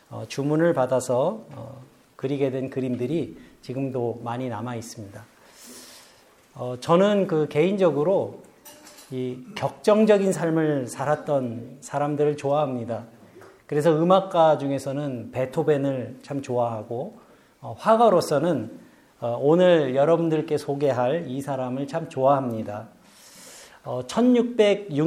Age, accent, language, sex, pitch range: 40-59, native, Korean, male, 125-165 Hz